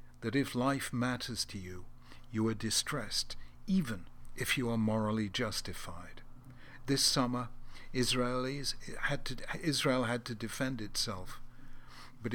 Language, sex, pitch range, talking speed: English, male, 110-130 Hz, 125 wpm